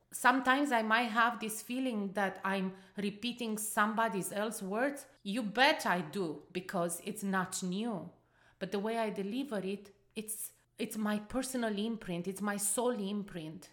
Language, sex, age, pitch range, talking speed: English, female, 30-49, 190-225 Hz, 155 wpm